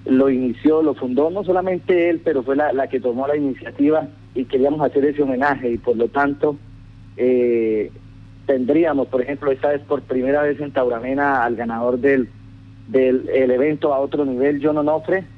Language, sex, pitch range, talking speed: Spanish, male, 120-145 Hz, 180 wpm